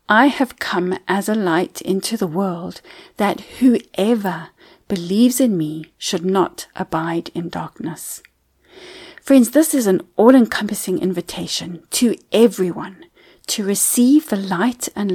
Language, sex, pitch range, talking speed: English, female, 190-260 Hz, 130 wpm